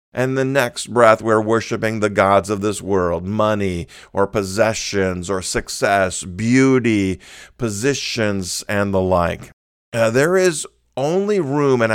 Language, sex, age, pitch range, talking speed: English, male, 50-69, 100-125 Hz, 130 wpm